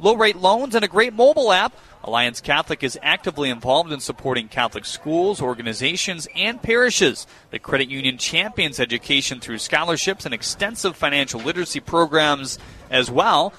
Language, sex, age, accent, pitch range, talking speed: English, male, 30-49, American, 145-215 Hz, 145 wpm